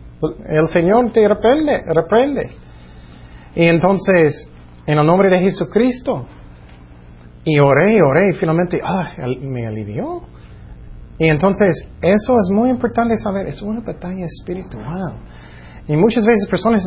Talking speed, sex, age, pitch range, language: 125 wpm, male, 30-49, 140-210 Hz, Spanish